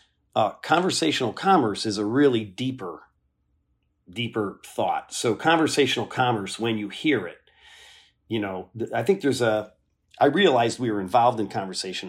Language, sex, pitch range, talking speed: English, male, 100-120 Hz, 145 wpm